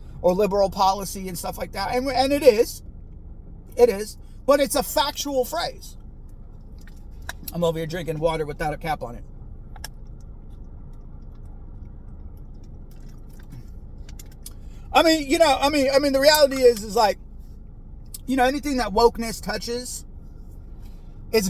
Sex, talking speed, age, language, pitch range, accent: male, 135 wpm, 30-49, English, 170-235 Hz, American